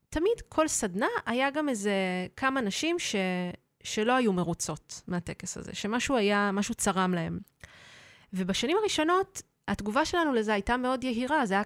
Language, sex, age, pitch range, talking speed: Hebrew, female, 20-39, 185-245 Hz, 150 wpm